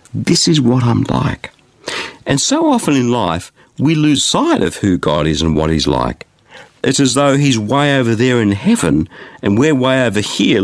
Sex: male